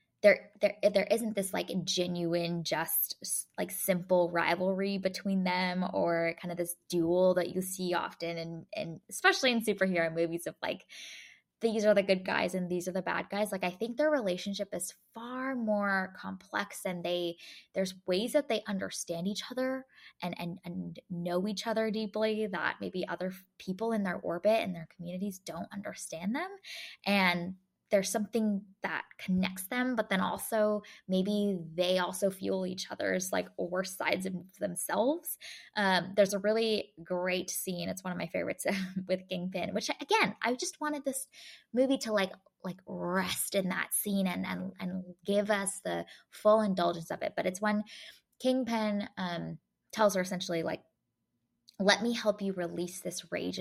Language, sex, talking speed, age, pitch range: English, female, 170 wpm, 10-29, 180-215 Hz